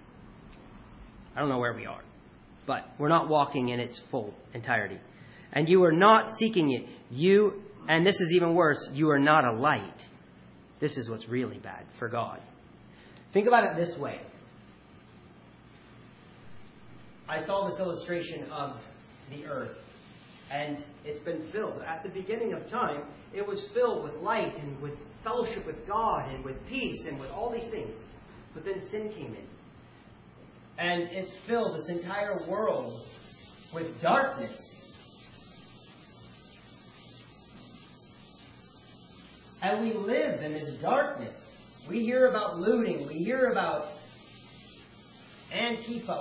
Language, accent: English, American